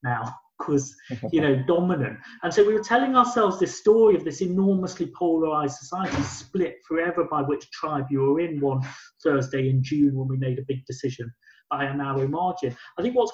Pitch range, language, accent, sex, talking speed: 140-190 Hz, English, British, male, 190 wpm